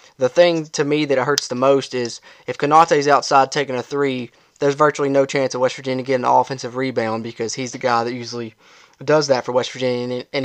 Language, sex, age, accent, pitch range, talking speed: English, male, 20-39, American, 125-145 Hz, 220 wpm